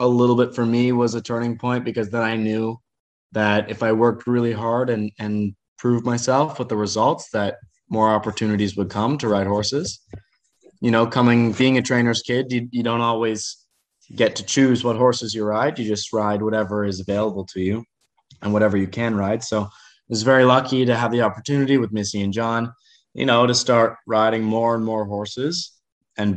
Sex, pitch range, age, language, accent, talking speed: male, 105-120 Hz, 20-39, English, American, 200 wpm